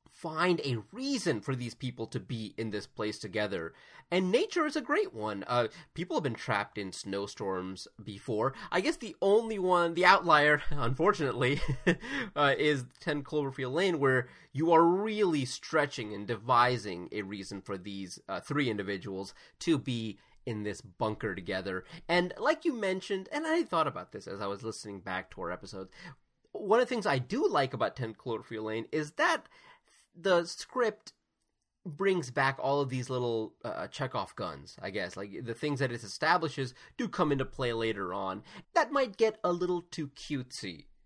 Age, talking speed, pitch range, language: 30-49, 175 wpm, 110-180 Hz, English